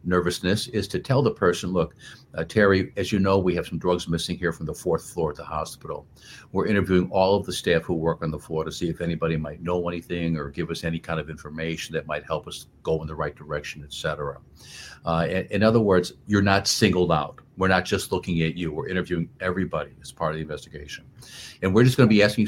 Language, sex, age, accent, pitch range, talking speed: English, male, 50-69, American, 85-110 Hz, 240 wpm